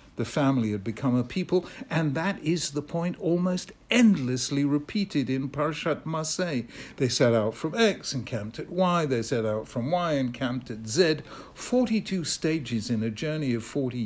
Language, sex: English, male